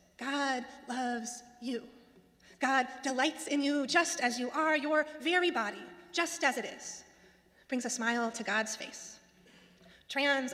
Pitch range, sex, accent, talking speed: 235-285 Hz, female, American, 140 wpm